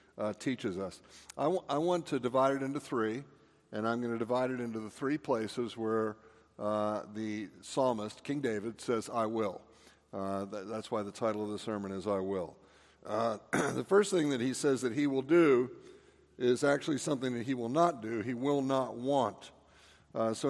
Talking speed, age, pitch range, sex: 200 wpm, 50-69, 110-145 Hz, male